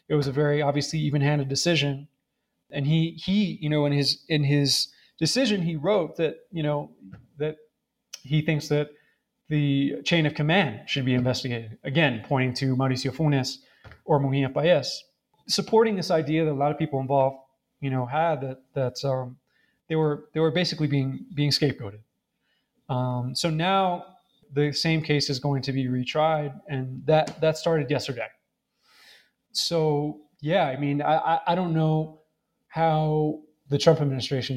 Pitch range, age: 140-170 Hz, 20-39